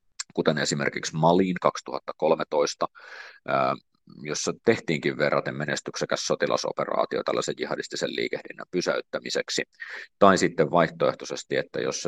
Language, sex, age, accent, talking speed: Finnish, male, 30-49, native, 90 wpm